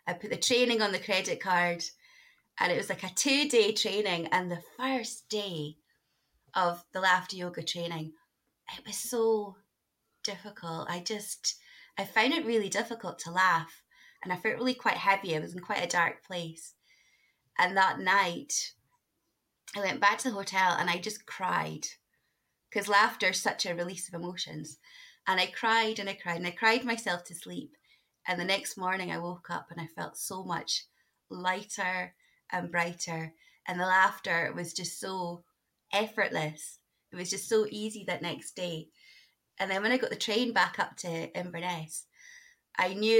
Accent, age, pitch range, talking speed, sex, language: British, 20-39, 175-215 Hz, 175 wpm, female, English